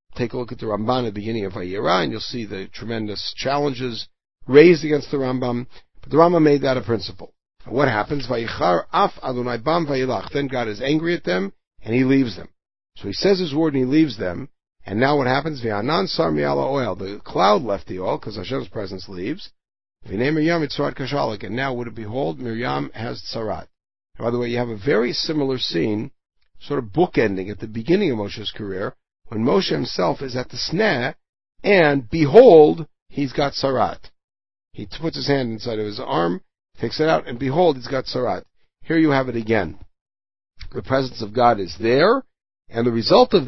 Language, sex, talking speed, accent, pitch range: English, male, 195 wpm, American, 105-140 Hz